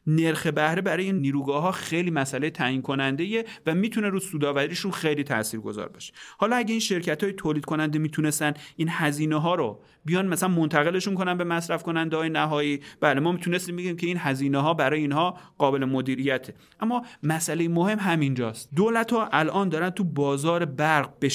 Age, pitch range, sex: 30-49, 140-180 Hz, male